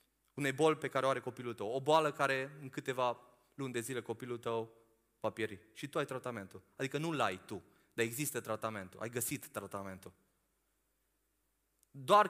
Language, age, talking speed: Romanian, 20-39, 170 wpm